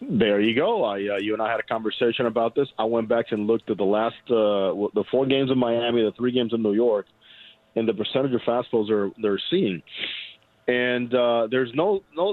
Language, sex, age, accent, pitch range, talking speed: English, male, 40-59, American, 110-140 Hz, 225 wpm